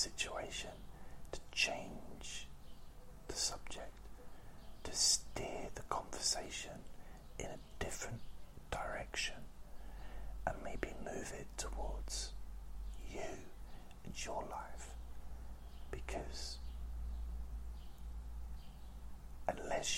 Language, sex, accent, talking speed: English, male, British, 70 wpm